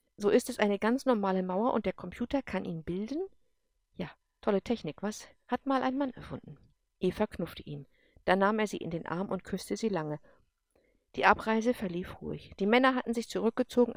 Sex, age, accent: female, 50-69, German